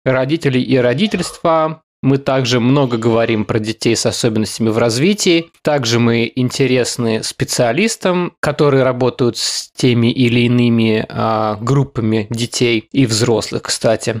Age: 20-39